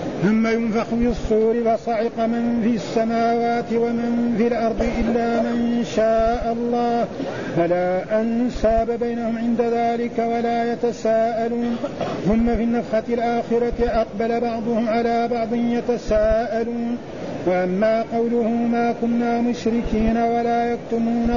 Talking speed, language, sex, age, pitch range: 105 wpm, Arabic, male, 50-69, 225-240 Hz